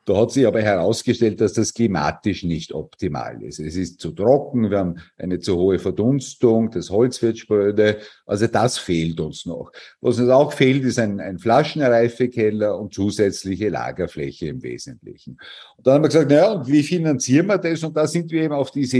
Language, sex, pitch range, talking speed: German, male, 110-140 Hz, 190 wpm